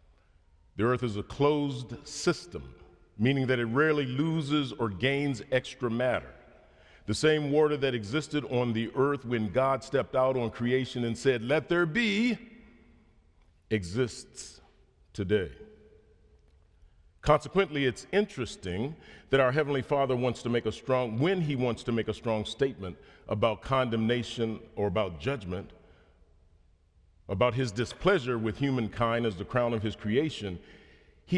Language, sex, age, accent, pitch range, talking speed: English, male, 50-69, American, 85-135 Hz, 140 wpm